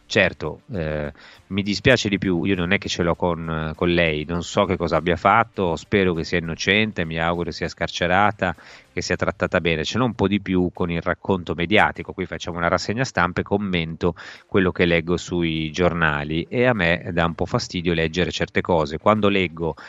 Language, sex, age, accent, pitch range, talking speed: Italian, male, 30-49, native, 80-95 Hz, 205 wpm